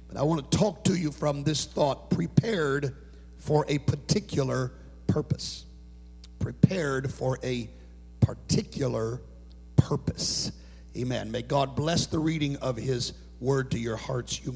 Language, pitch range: English, 120-185 Hz